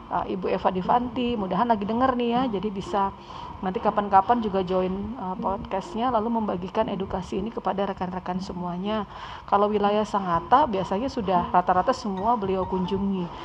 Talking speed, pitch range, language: 140 wpm, 180-220 Hz, Indonesian